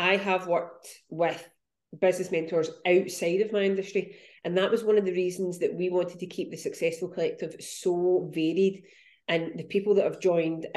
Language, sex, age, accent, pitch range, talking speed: English, female, 30-49, British, 165-205 Hz, 185 wpm